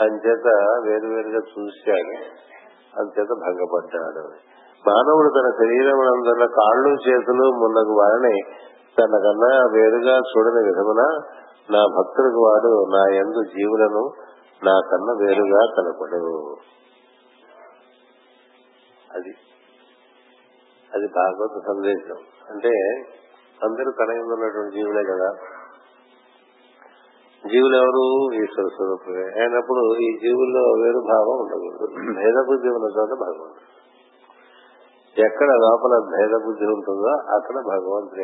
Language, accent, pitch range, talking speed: Telugu, native, 105-130 Hz, 85 wpm